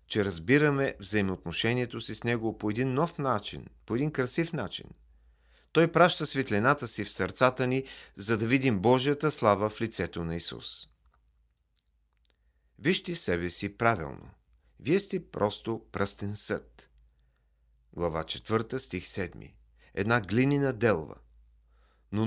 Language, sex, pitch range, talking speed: Bulgarian, male, 90-135 Hz, 125 wpm